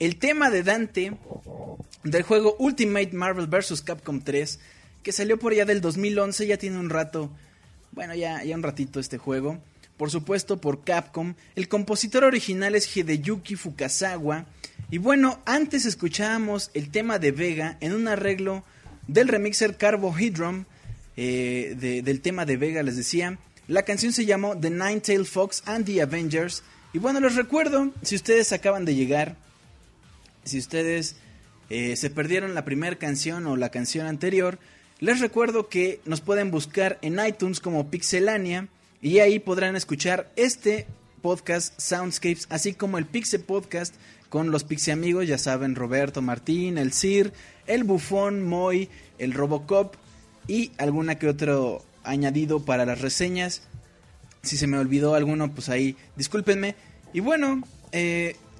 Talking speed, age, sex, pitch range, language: 150 wpm, 20-39, male, 145-200 Hz, Spanish